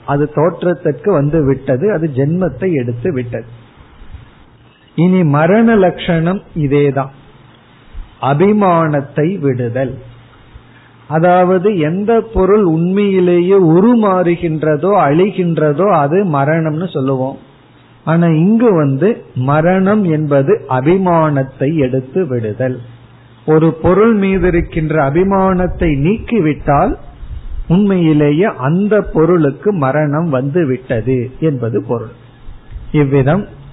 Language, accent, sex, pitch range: Tamil, native, male, 135-180 Hz